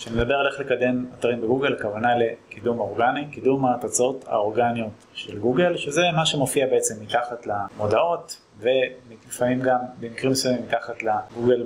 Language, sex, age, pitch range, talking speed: Hebrew, male, 20-39, 115-140 Hz, 140 wpm